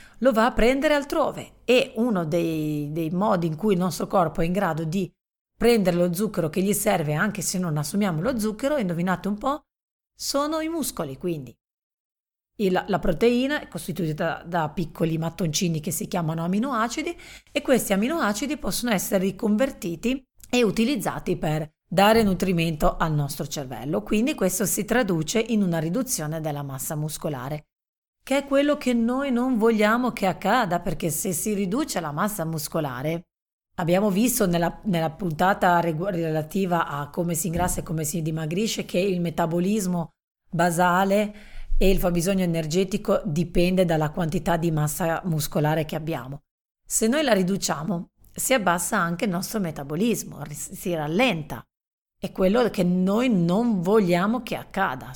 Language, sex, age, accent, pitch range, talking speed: Italian, female, 40-59, native, 165-215 Hz, 155 wpm